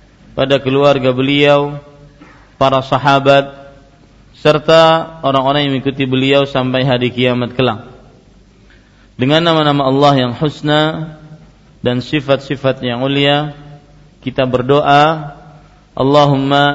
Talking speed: 90 wpm